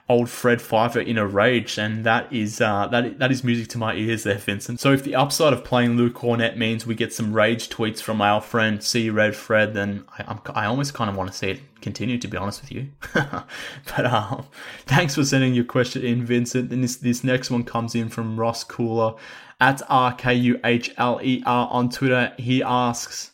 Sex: male